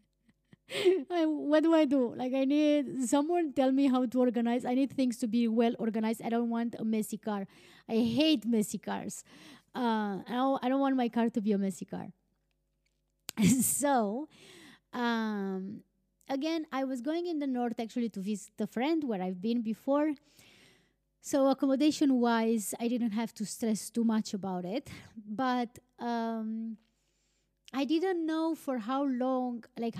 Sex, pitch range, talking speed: female, 215-275 Hz, 160 wpm